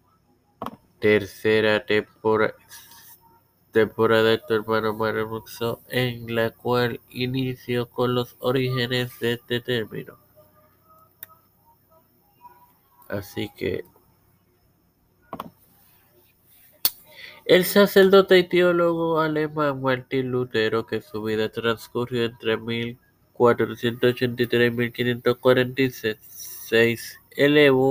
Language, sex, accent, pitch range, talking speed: Spanish, male, Indian, 115-130 Hz, 70 wpm